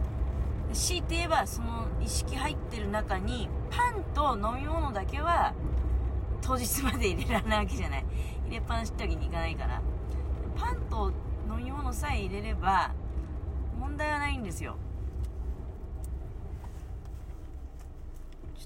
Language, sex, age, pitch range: Japanese, female, 30-49, 65-85 Hz